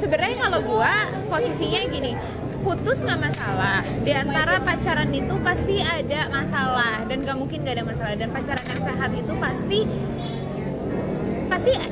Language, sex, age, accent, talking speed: Indonesian, female, 20-39, native, 140 wpm